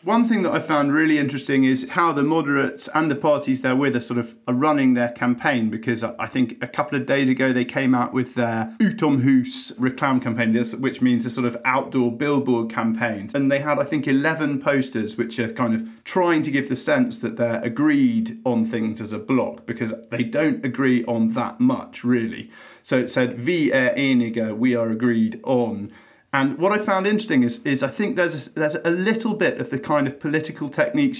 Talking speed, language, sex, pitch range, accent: 210 wpm, English, male, 120-155 Hz, British